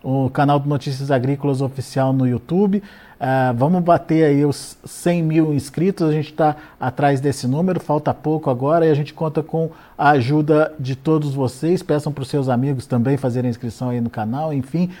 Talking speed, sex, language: 190 wpm, male, Portuguese